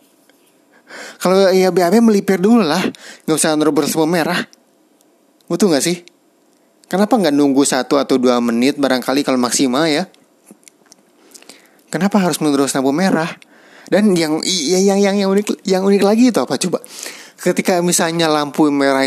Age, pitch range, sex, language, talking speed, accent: 30-49, 135-210 Hz, male, Indonesian, 150 wpm, native